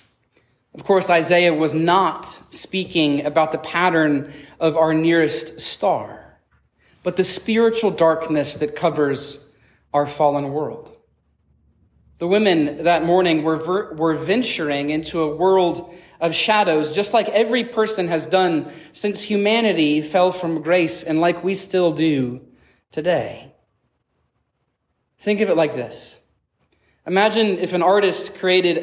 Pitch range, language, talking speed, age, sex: 160-205 Hz, English, 125 wpm, 20-39, male